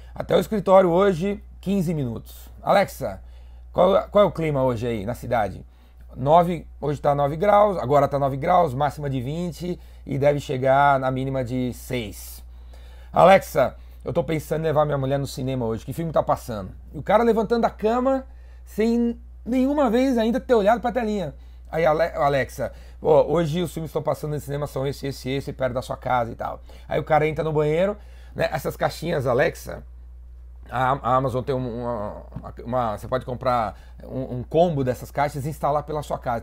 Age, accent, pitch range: 30-49, Brazilian, 120-170 Hz